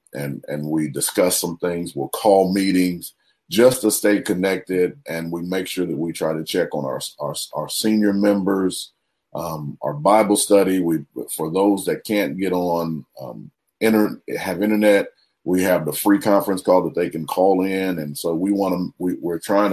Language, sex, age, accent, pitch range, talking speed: English, male, 40-59, American, 80-95 Hz, 190 wpm